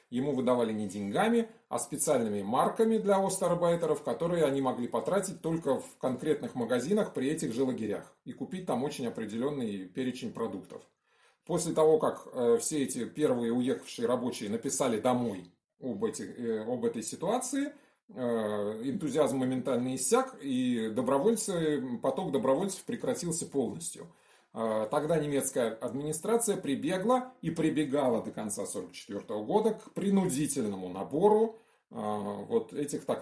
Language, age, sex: Russian, 30-49, male